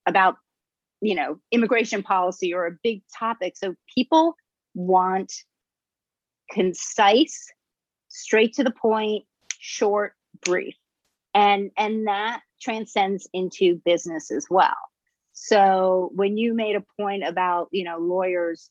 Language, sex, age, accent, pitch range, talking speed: English, female, 40-59, American, 185-230 Hz, 120 wpm